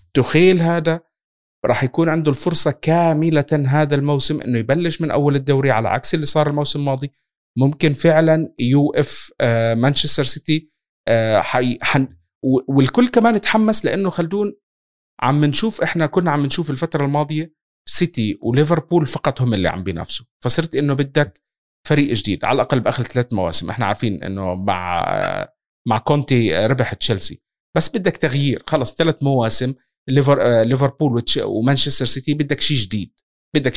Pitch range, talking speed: 125-160 Hz, 140 wpm